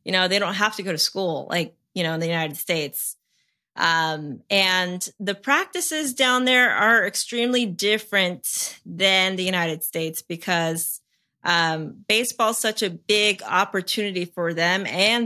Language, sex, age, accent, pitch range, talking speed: English, female, 30-49, American, 175-215 Hz, 155 wpm